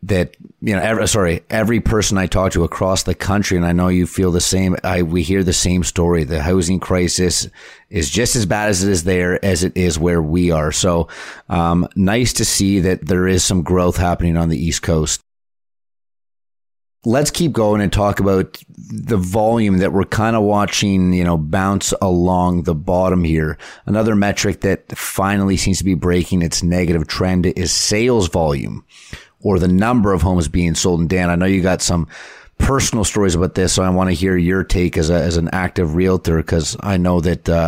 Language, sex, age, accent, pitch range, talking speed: English, male, 30-49, American, 85-100 Hz, 205 wpm